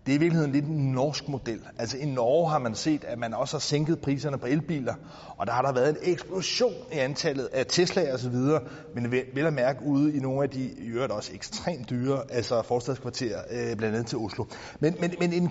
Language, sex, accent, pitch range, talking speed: Danish, male, native, 125-170 Hz, 235 wpm